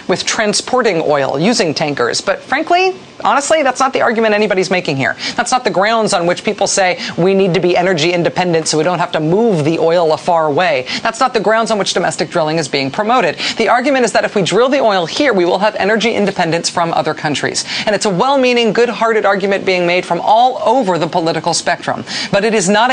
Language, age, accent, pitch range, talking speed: English, 40-59, American, 175-245 Hz, 230 wpm